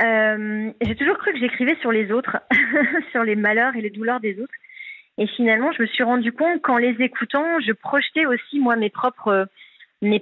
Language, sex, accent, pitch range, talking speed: French, female, French, 205-255 Hz, 200 wpm